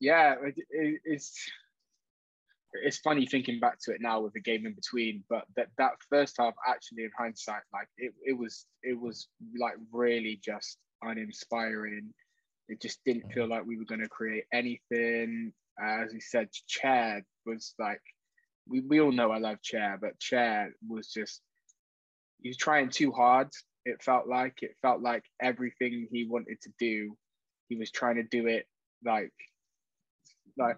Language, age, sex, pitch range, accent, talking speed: English, 10-29, male, 110-130 Hz, British, 165 wpm